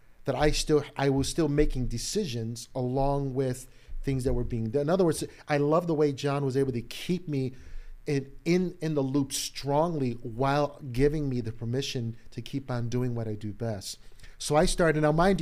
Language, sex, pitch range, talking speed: English, male, 125-145 Hz, 200 wpm